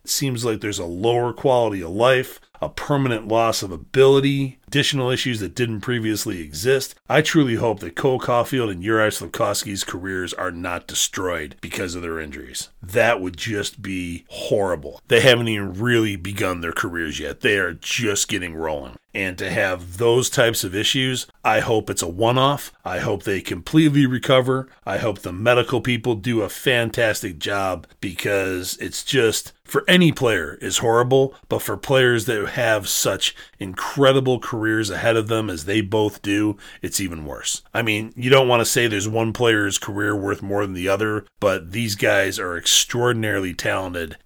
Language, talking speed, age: English, 175 wpm, 40-59